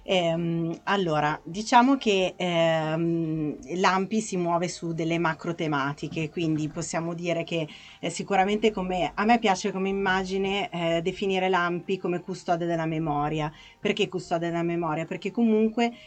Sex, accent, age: female, native, 30-49